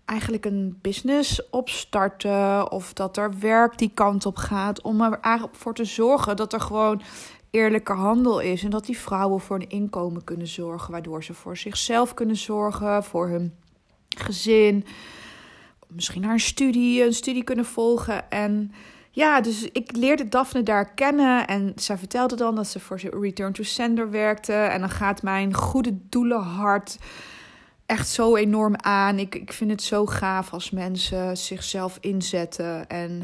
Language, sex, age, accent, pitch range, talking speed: Dutch, female, 20-39, Dutch, 190-230 Hz, 160 wpm